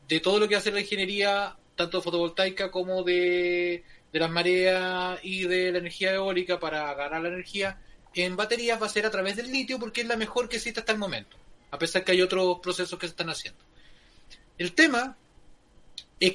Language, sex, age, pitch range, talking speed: Spanish, male, 30-49, 180-270 Hz, 200 wpm